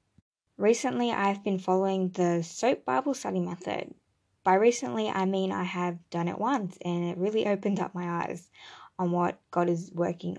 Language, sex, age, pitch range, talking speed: English, female, 10-29, 175-205 Hz, 175 wpm